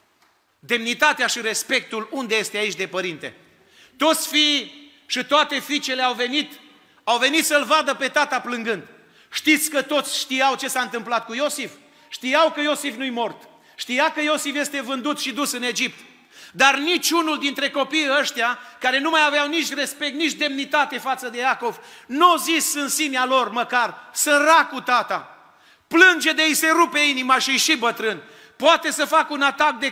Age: 40-59